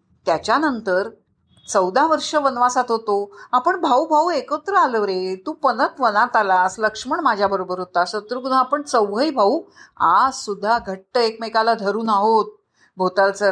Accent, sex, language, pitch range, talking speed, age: native, female, Marathi, 200-285 Hz, 135 wpm, 50-69